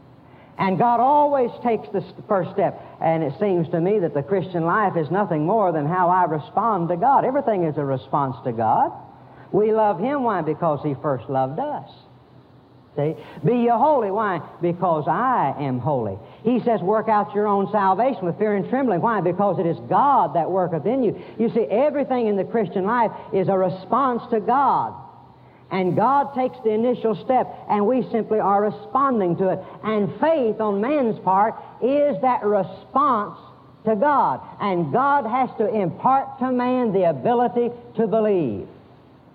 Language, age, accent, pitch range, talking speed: English, 60-79, American, 180-240 Hz, 175 wpm